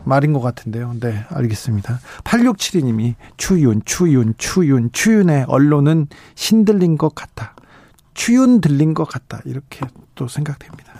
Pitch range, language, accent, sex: 125-165 Hz, Korean, native, male